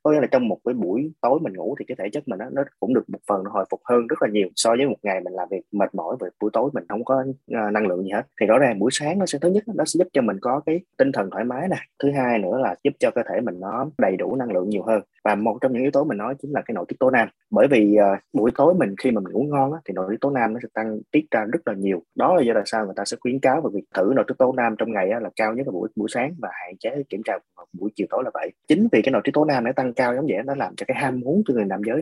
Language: Vietnamese